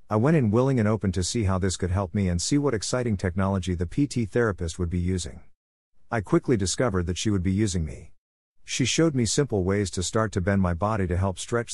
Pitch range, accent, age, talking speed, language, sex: 90-115 Hz, American, 50-69, 240 wpm, English, male